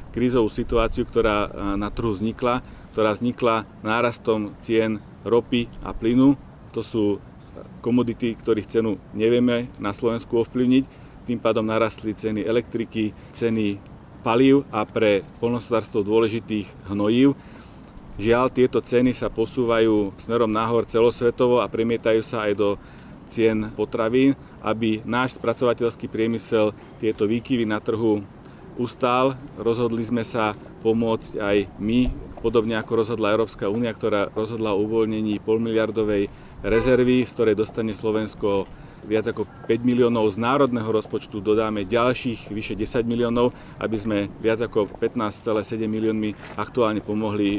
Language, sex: Slovak, male